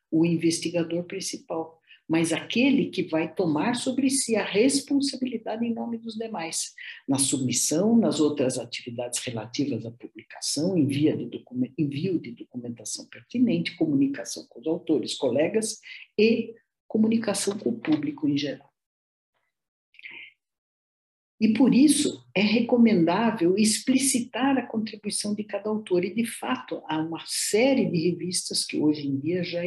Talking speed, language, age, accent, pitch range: 130 wpm, Portuguese, 60-79, Brazilian, 165-255 Hz